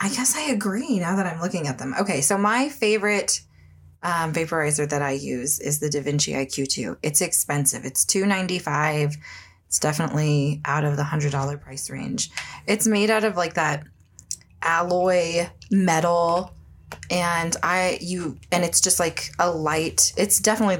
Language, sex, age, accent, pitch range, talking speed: English, female, 20-39, American, 145-195 Hz, 160 wpm